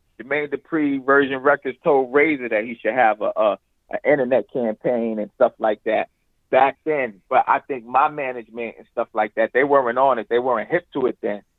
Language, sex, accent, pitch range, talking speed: English, male, American, 125-175 Hz, 205 wpm